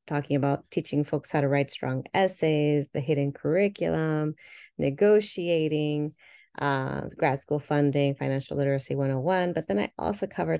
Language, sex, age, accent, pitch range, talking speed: English, female, 30-49, American, 140-160 Hz, 140 wpm